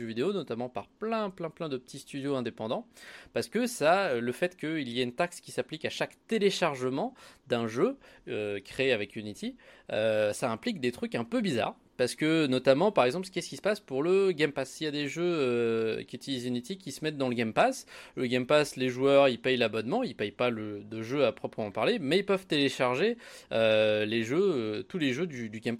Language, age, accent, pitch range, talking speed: French, 20-39, French, 115-155 Hz, 235 wpm